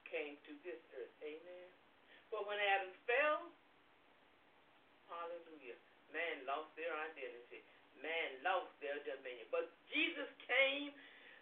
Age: 50-69